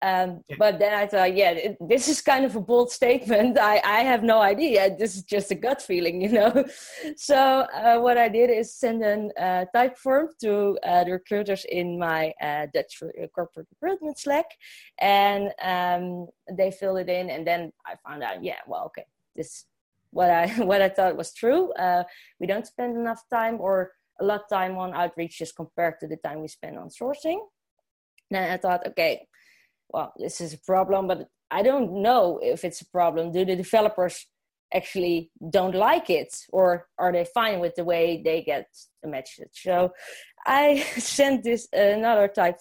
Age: 20-39